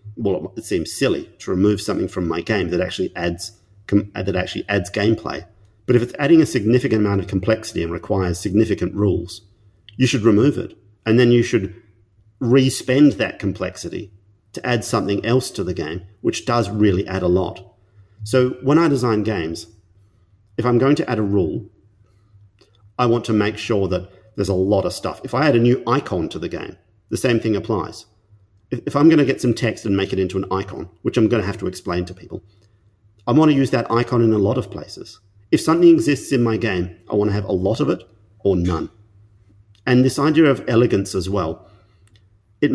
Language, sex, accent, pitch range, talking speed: English, male, Australian, 95-120 Hz, 205 wpm